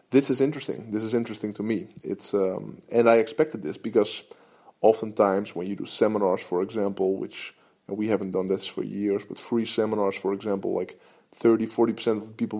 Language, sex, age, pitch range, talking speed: English, male, 20-39, 105-120 Hz, 195 wpm